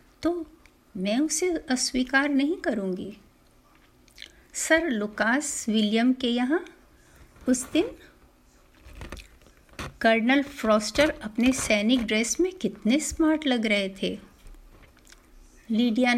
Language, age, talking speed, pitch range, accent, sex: Hindi, 50-69, 95 wpm, 205-270 Hz, native, female